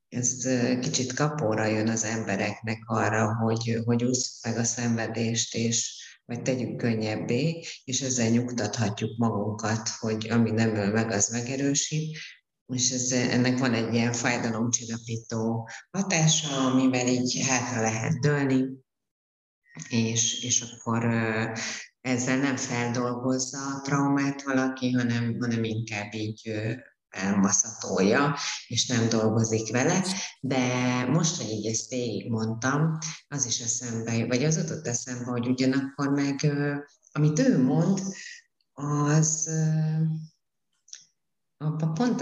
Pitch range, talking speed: 115-135 Hz, 110 wpm